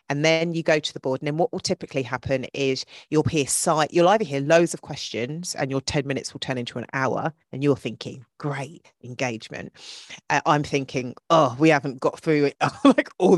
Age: 40-59